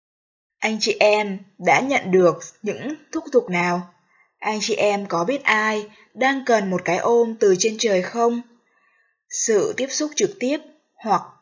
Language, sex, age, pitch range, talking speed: Vietnamese, female, 20-39, 180-235 Hz, 165 wpm